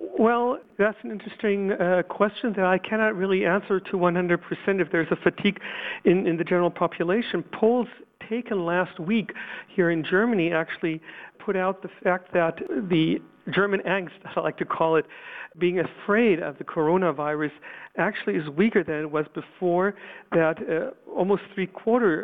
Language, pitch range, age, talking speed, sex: English, 165-200 Hz, 50-69, 160 wpm, male